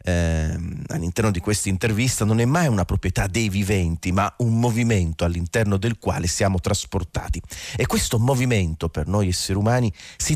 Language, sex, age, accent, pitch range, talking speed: Italian, male, 40-59, native, 85-110 Hz, 160 wpm